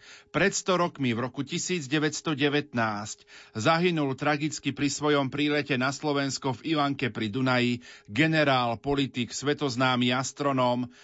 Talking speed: 115 wpm